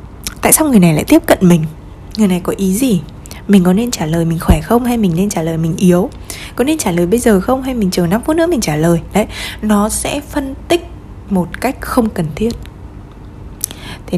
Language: Vietnamese